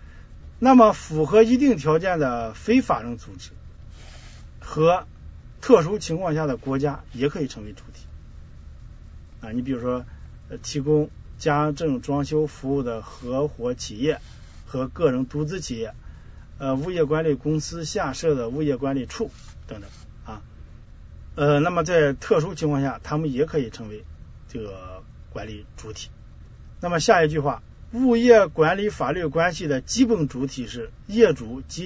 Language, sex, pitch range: Chinese, male, 115-155 Hz